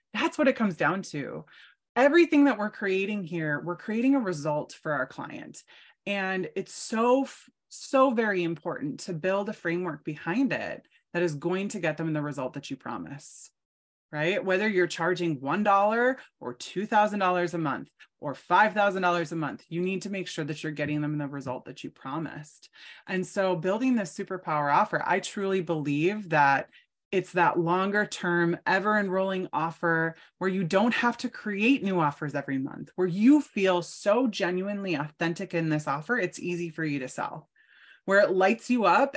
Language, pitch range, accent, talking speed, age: English, 160-210 Hz, American, 175 wpm, 20-39